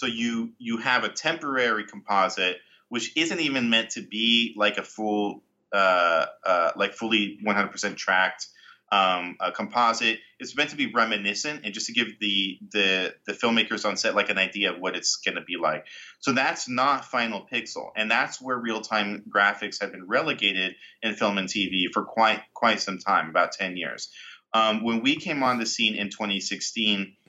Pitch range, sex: 100-115 Hz, male